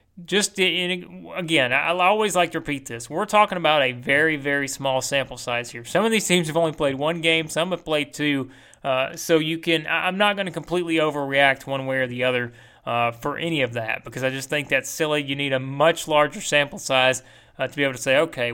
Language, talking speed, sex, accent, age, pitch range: English, 235 wpm, male, American, 30-49, 125-150 Hz